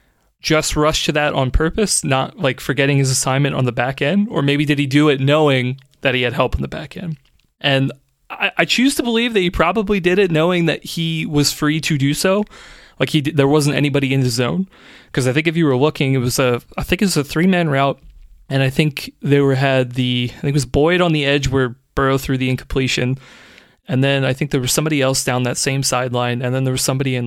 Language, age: English, 30-49